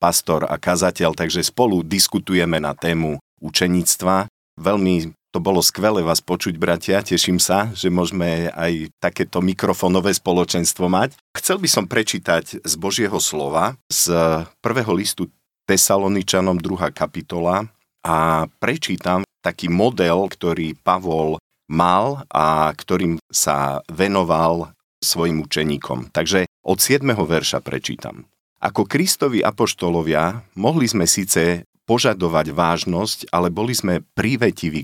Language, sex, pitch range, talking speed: Slovak, male, 80-95 Hz, 115 wpm